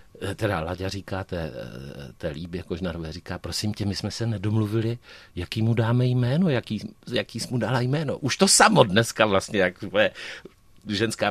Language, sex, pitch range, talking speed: Czech, male, 90-120 Hz, 155 wpm